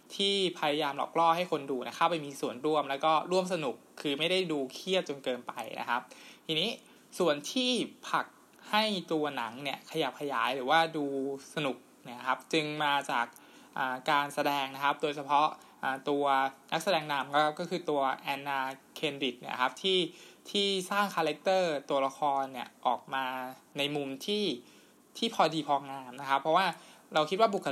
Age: 20-39